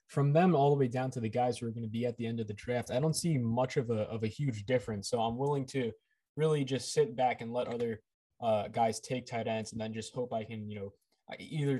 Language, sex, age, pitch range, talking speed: English, male, 20-39, 115-140 Hz, 280 wpm